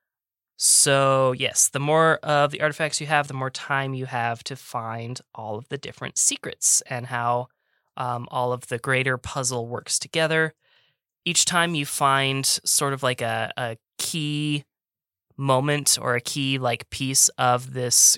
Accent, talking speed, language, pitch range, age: American, 160 wpm, English, 120-150 Hz, 20-39